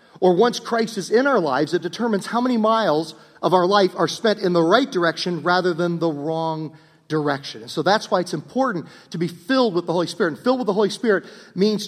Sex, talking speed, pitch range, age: male, 230 wpm, 140-210 Hz, 50-69